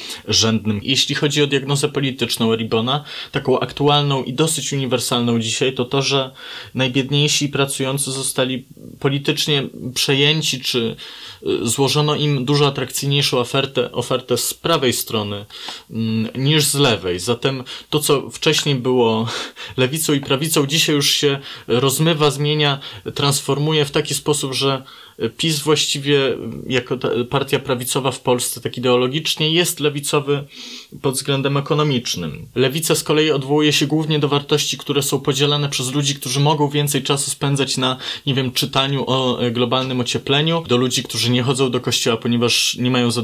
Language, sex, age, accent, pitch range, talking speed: Polish, male, 20-39, native, 125-150 Hz, 140 wpm